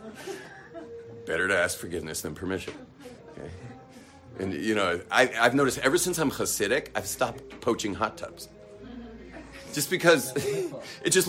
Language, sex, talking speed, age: English, male, 135 wpm, 40-59